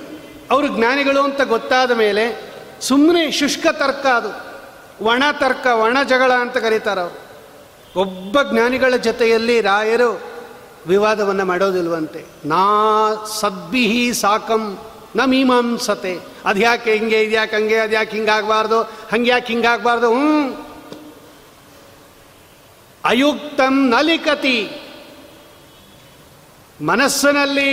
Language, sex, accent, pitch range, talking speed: Kannada, male, native, 205-265 Hz, 80 wpm